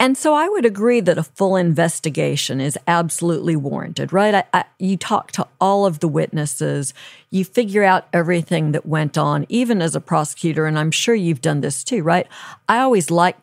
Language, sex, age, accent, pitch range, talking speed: English, female, 50-69, American, 155-195 Hz, 190 wpm